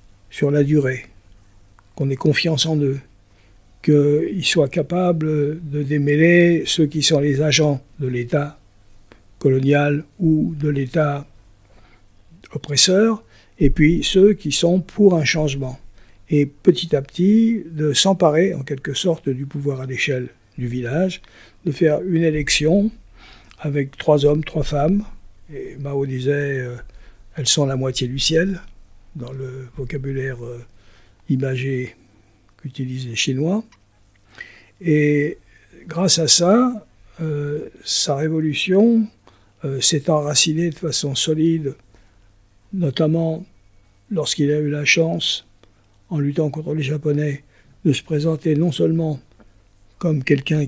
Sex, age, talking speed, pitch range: male, 60-79, 125 wpm, 125-160 Hz